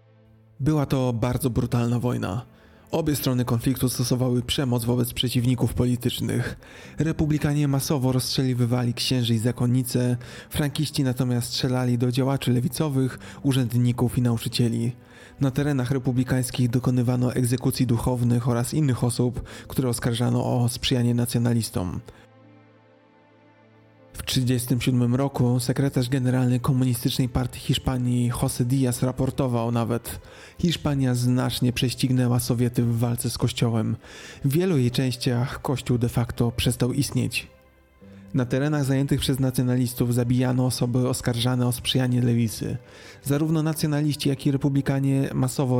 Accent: native